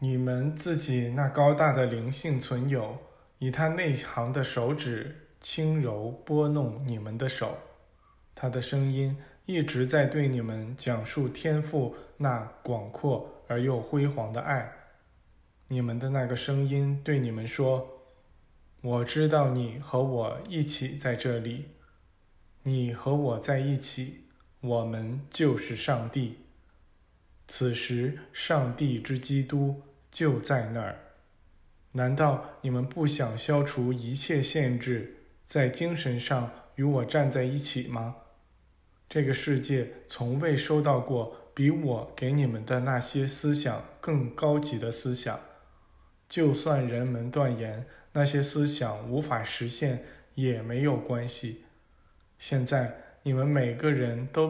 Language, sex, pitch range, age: Chinese, male, 120-145 Hz, 20-39